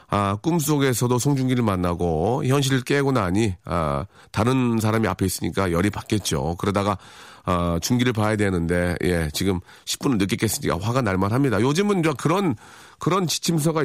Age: 40-59